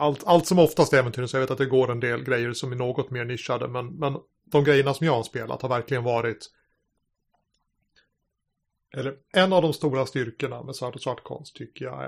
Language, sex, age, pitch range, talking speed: Swedish, male, 30-49, 120-140 Hz, 215 wpm